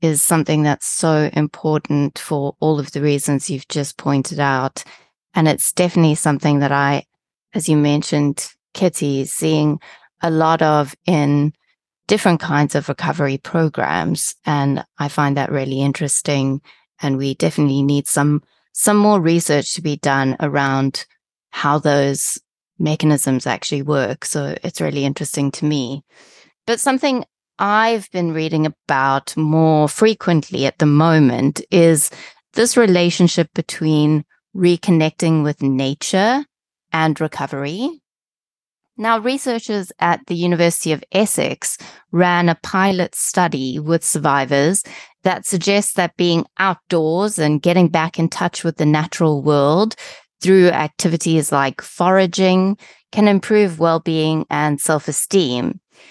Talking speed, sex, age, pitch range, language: 130 wpm, female, 20-39, 145-175 Hz, English